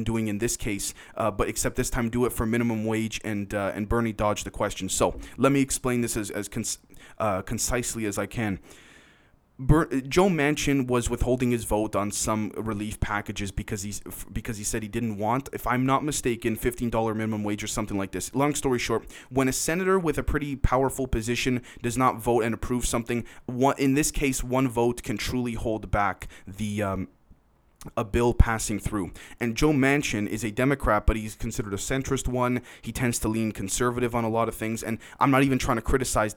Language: English